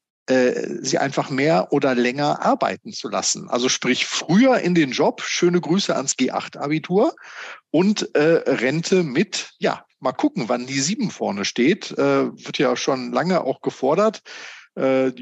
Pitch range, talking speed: 130-175 Hz, 150 wpm